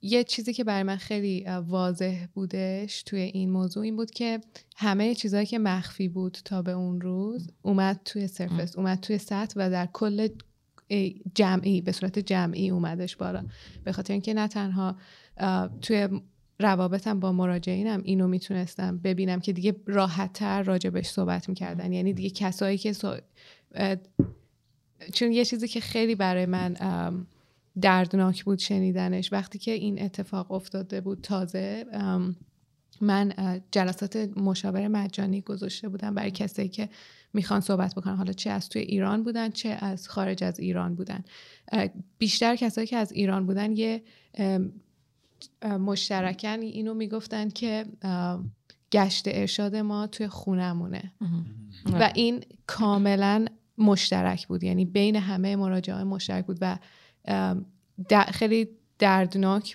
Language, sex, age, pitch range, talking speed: Persian, female, 20-39, 185-210 Hz, 135 wpm